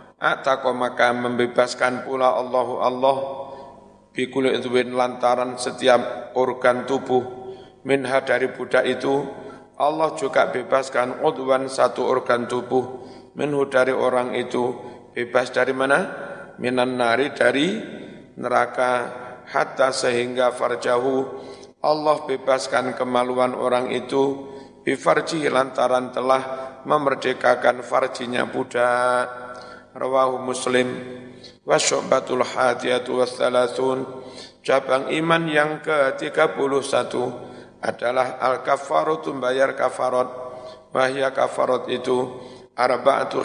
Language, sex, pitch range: Indonesian, male, 125-135 Hz